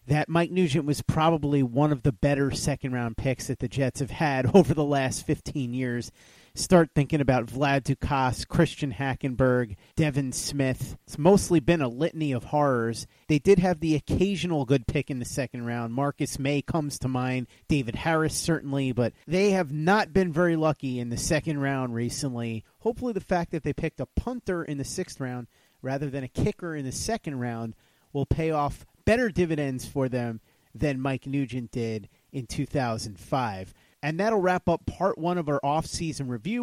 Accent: American